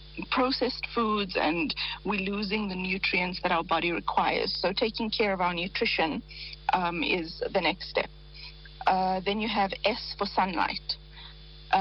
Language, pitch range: English, 170-225 Hz